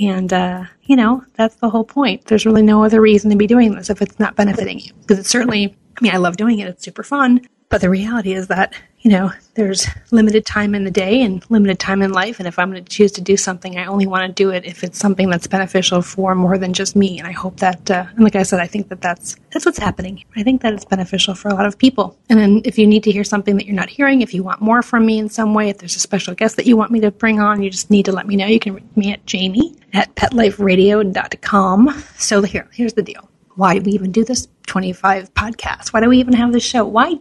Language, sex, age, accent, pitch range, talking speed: English, female, 30-49, American, 190-225 Hz, 275 wpm